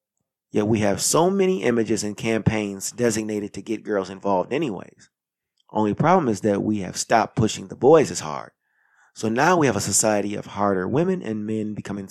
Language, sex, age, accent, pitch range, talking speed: English, male, 30-49, American, 100-120 Hz, 190 wpm